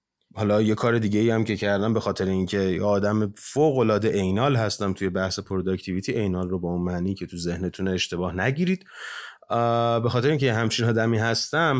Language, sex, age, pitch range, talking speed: Persian, male, 30-49, 100-130 Hz, 180 wpm